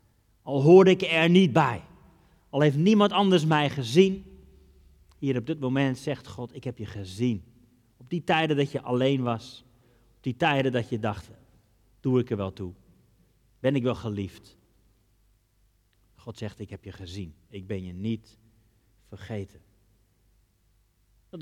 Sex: male